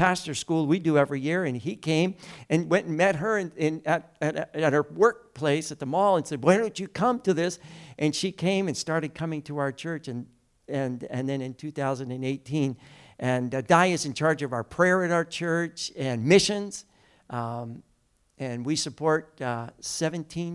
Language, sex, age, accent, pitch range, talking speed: English, male, 60-79, American, 145-200 Hz, 195 wpm